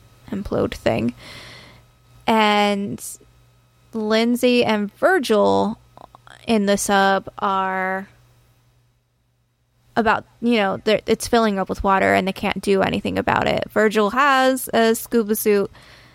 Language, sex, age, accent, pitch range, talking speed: English, female, 20-39, American, 190-225 Hz, 115 wpm